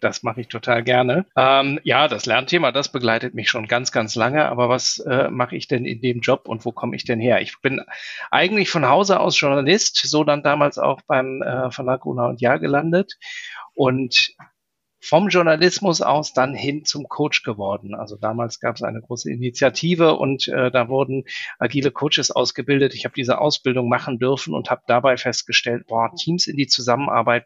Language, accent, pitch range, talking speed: German, German, 120-150 Hz, 190 wpm